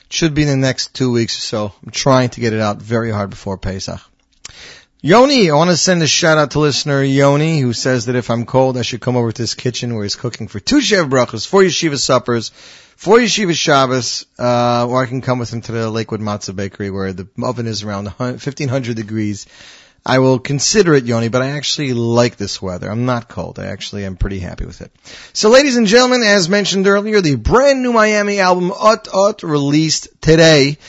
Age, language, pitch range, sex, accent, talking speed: 30-49, English, 115-155 Hz, male, American, 220 wpm